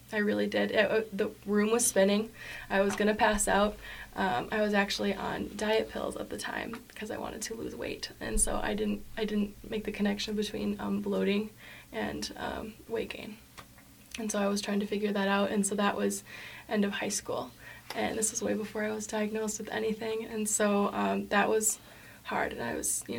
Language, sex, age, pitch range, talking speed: English, female, 20-39, 205-225 Hz, 215 wpm